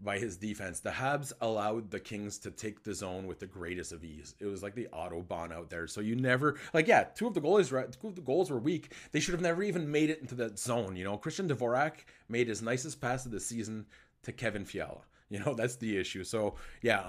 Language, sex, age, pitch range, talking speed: English, male, 30-49, 100-135 Hz, 255 wpm